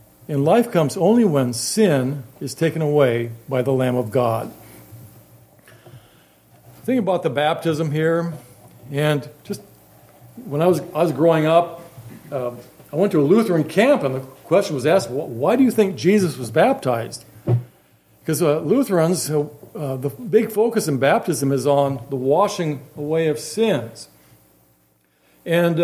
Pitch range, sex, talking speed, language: 135-200 Hz, male, 155 wpm, English